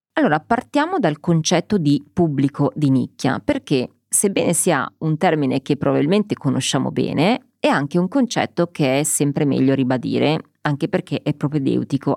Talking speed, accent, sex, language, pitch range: 150 wpm, native, female, Italian, 135-190 Hz